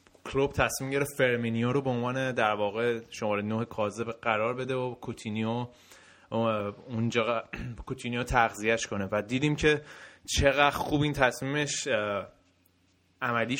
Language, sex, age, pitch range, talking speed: Persian, male, 20-39, 115-135 Hz, 125 wpm